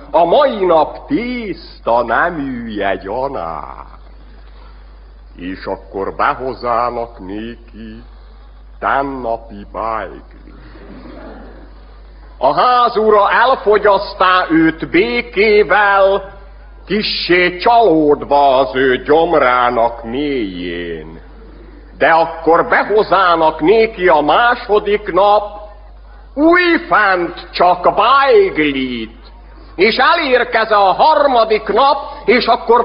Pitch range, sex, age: 165-270 Hz, male, 60-79